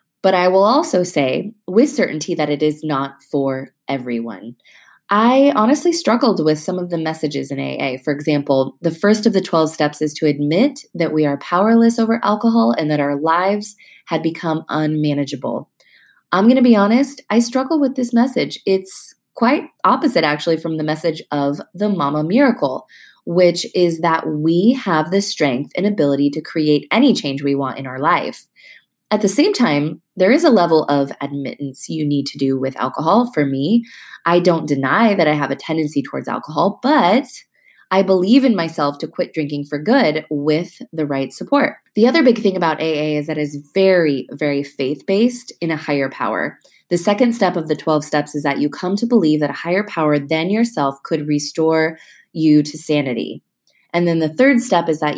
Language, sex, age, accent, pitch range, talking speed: English, female, 20-39, American, 145-200 Hz, 190 wpm